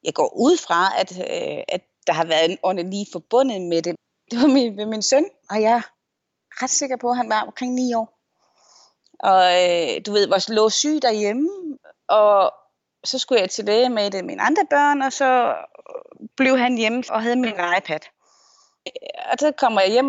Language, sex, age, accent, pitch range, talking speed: Danish, female, 30-49, native, 210-270 Hz, 205 wpm